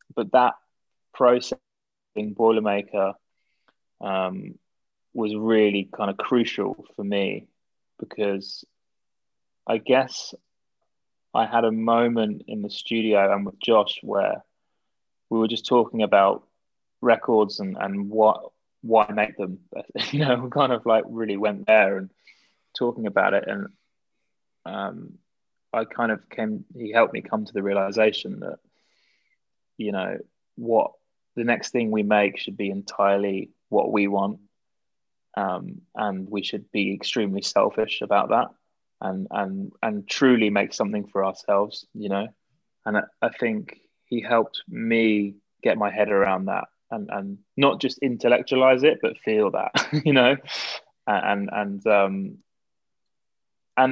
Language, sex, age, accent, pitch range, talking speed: English, male, 20-39, British, 100-120 Hz, 140 wpm